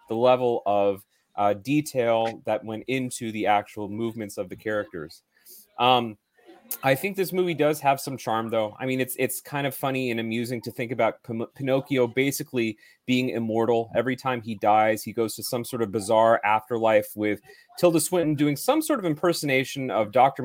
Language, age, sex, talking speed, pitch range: English, 30-49, male, 180 wpm, 115-155 Hz